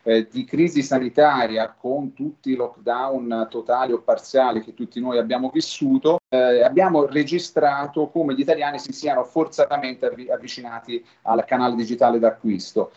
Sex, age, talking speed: male, 40-59, 145 wpm